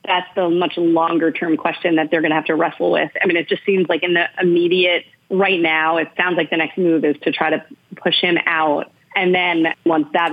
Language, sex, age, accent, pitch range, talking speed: English, female, 30-49, American, 160-185 Hz, 245 wpm